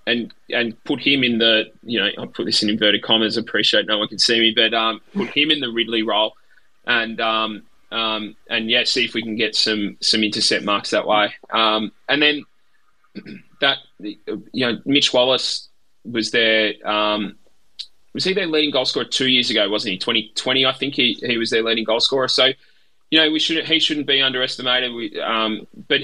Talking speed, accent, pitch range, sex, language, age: 205 wpm, Australian, 105-130 Hz, male, English, 20-39